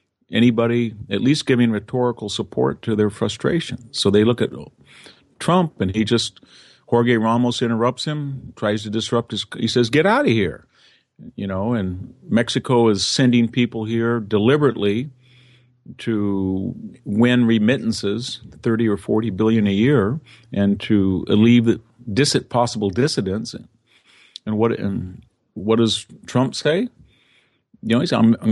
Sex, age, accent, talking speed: male, 50-69, American, 145 wpm